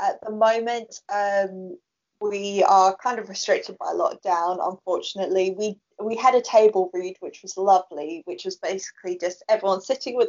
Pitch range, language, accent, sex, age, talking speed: 190-230 Hz, English, British, female, 20-39, 165 wpm